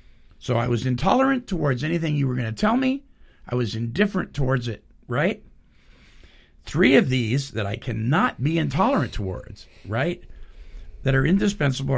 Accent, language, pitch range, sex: American, English, 115-145 Hz, male